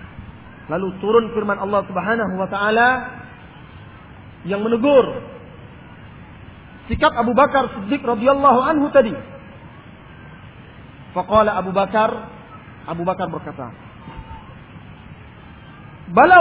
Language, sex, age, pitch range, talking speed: Indonesian, male, 40-59, 170-265 Hz, 85 wpm